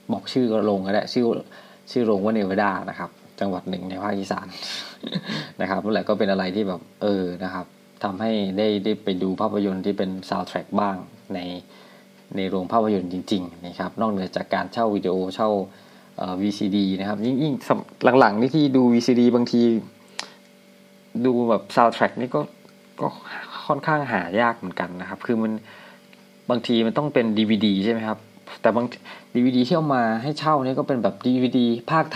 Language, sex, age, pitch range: Thai, male, 20-39, 95-120 Hz